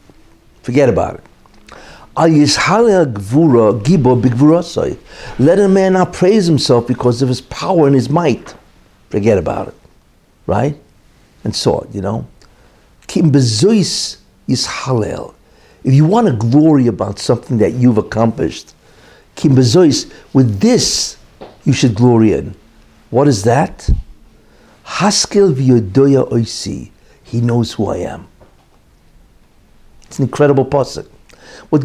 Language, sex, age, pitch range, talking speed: English, male, 60-79, 125-170 Hz, 100 wpm